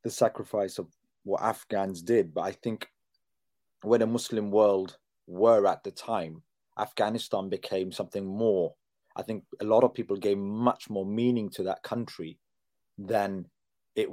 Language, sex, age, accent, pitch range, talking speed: English, male, 30-49, British, 95-115 Hz, 155 wpm